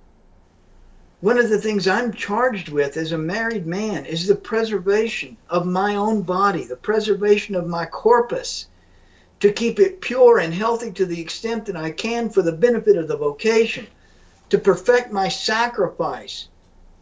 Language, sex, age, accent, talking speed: English, male, 60-79, American, 160 wpm